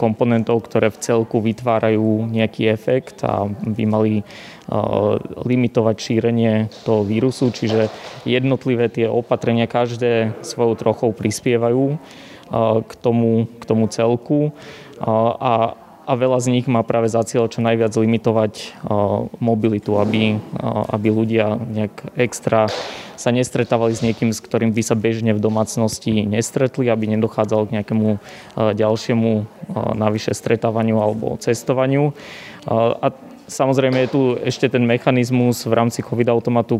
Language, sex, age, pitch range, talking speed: Slovak, male, 20-39, 110-120 Hz, 125 wpm